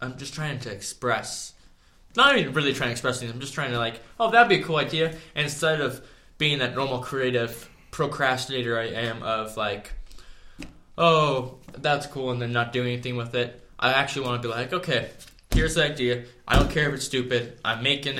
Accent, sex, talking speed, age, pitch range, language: American, male, 210 wpm, 20-39, 115-135 Hz, English